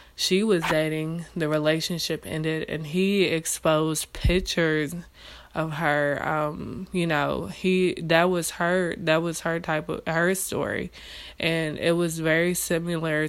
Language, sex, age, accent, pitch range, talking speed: English, female, 20-39, American, 155-170 Hz, 140 wpm